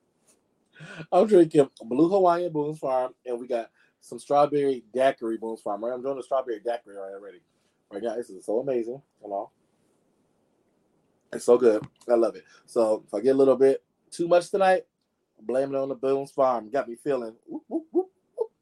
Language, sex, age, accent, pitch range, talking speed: English, male, 20-39, American, 120-170 Hz, 190 wpm